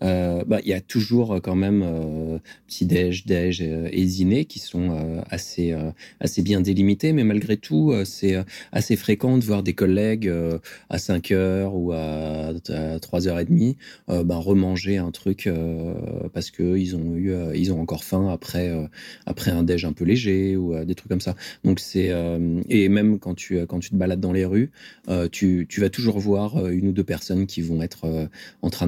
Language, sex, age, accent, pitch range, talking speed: French, male, 30-49, French, 85-105 Hz, 205 wpm